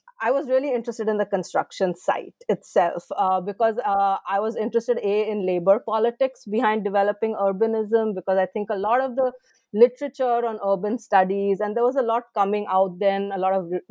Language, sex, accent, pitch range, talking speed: English, female, Indian, 195-245 Hz, 195 wpm